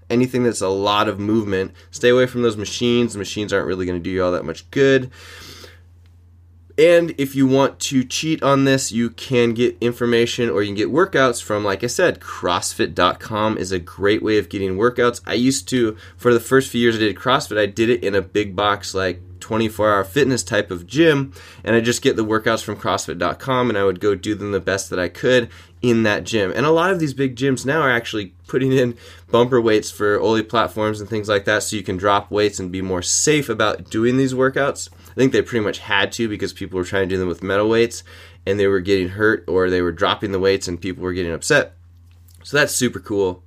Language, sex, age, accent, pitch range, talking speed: English, male, 20-39, American, 95-120 Hz, 230 wpm